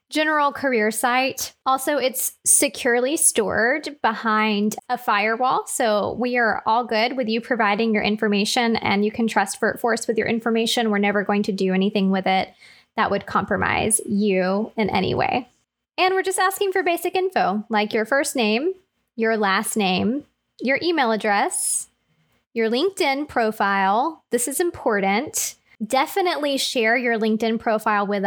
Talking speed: 155 wpm